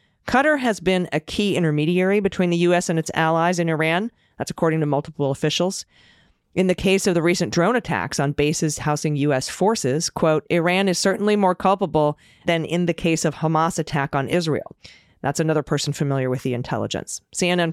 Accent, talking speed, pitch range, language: American, 185 wpm, 145-180 Hz, English